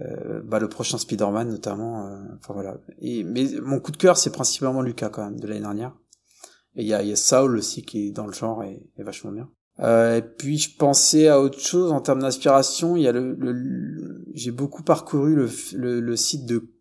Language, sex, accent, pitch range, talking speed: French, male, French, 115-155 Hz, 230 wpm